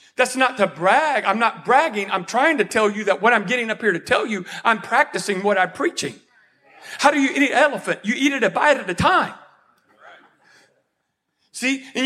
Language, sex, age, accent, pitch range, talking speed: English, male, 40-59, American, 200-280 Hz, 210 wpm